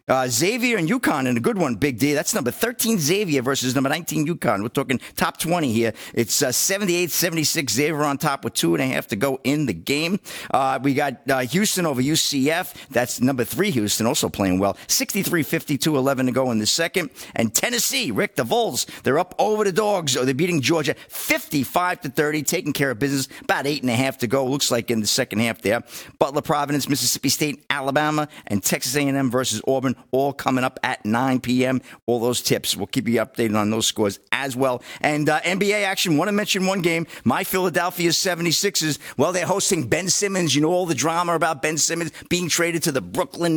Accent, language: American, English